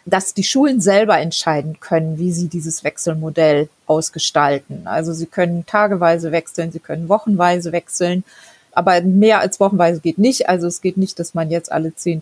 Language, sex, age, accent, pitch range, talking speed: German, female, 30-49, German, 175-220 Hz, 170 wpm